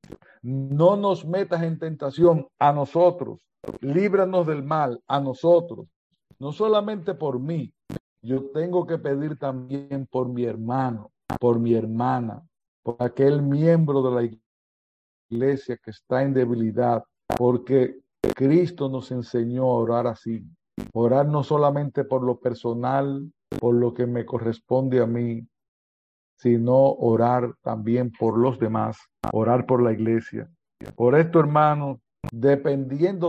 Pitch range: 120-145 Hz